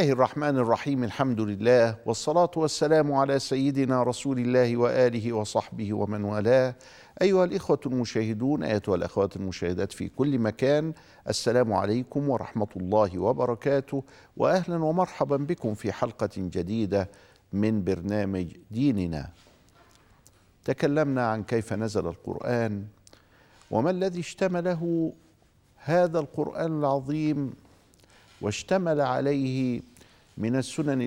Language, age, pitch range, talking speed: Arabic, 50-69, 100-135 Hz, 100 wpm